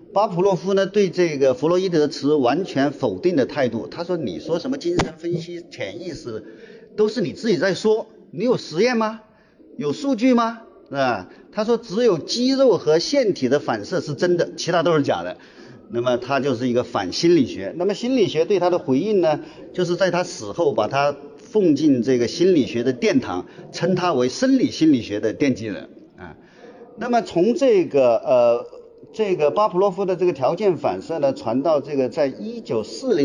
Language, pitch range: Chinese, 150-235 Hz